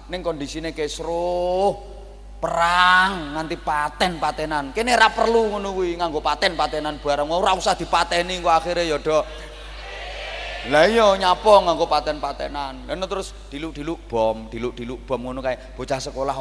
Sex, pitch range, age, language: male, 145-205 Hz, 30-49, Indonesian